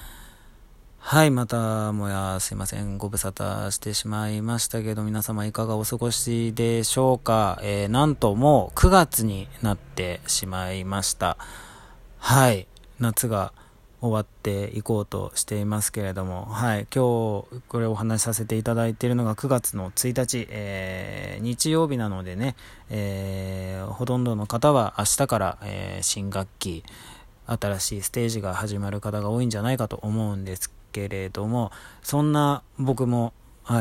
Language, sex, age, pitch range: Japanese, male, 20-39, 95-120 Hz